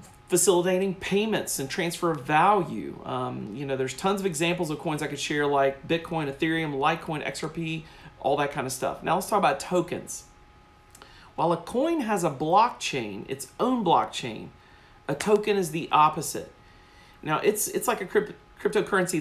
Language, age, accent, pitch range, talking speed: English, 40-59, American, 140-185 Hz, 170 wpm